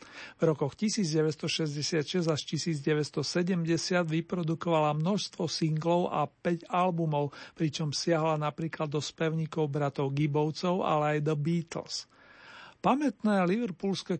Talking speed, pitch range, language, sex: 100 wpm, 150-170 Hz, Slovak, male